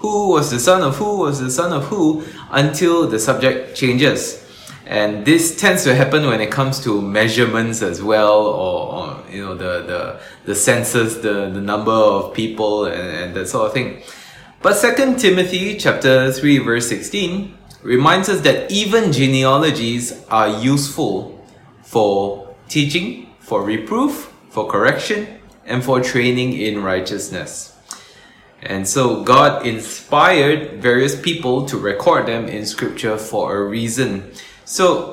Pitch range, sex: 110-160 Hz, male